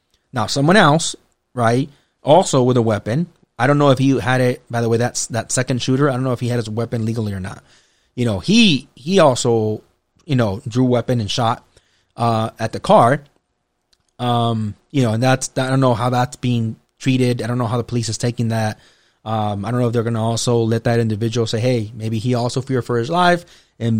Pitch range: 115-140 Hz